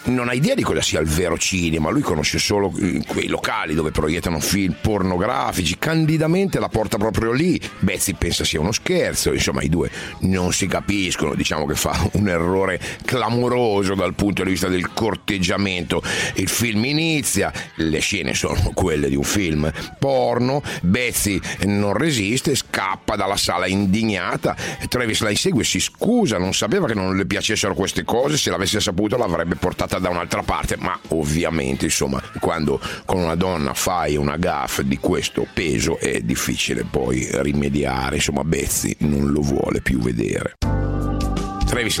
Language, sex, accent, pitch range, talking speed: Italian, male, native, 80-110 Hz, 155 wpm